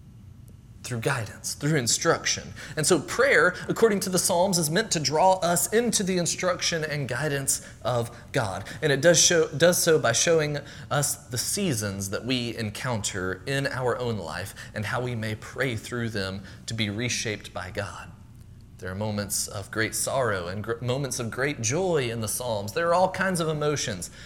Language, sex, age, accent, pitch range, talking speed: English, male, 30-49, American, 110-155 Hz, 180 wpm